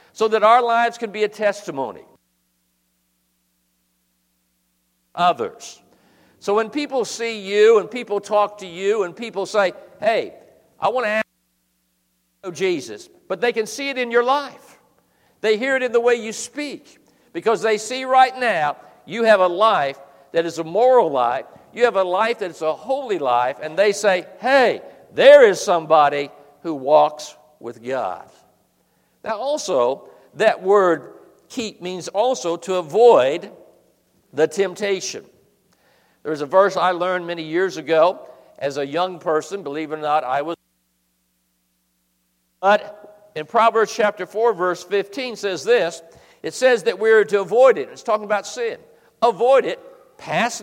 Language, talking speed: English, 160 wpm